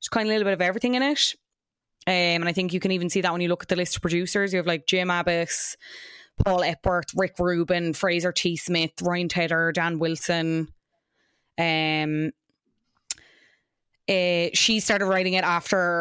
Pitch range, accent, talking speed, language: 175-215 Hz, Irish, 185 wpm, English